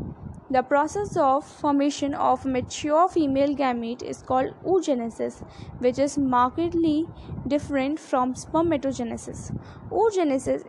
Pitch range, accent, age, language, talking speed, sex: 255-320 Hz, Indian, 10-29, English, 100 wpm, female